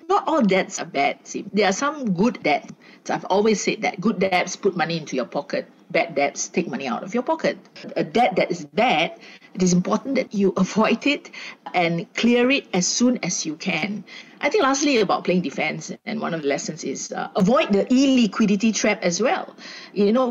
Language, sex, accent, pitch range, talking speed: English, female, Malaysian, 185-245 Hz, 210 wpm